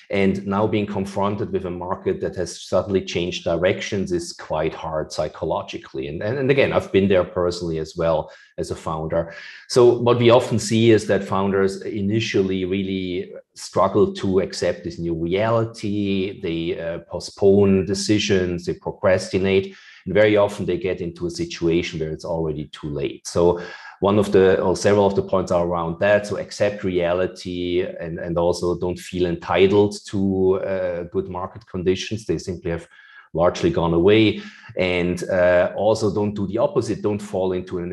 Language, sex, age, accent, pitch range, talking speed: English, male, 40-59, German, 90-105 Hz, 170 wpm